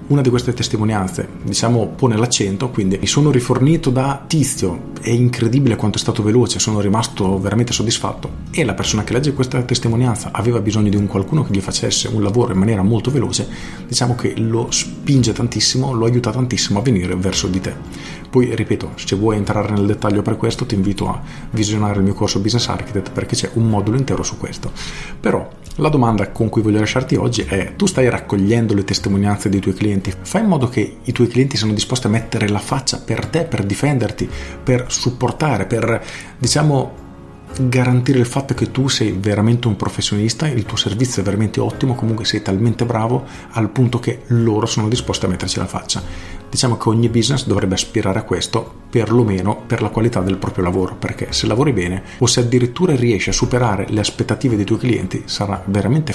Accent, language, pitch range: native, Italian, 100-120 Hz